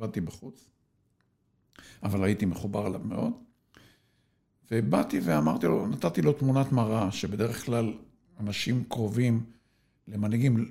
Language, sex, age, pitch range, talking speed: Hebrew, male, 60-79, 105-140 Hz, 100 wpm